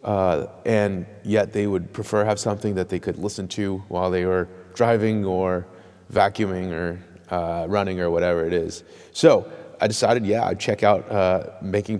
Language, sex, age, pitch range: English, male, 30-49, 95-120 Hz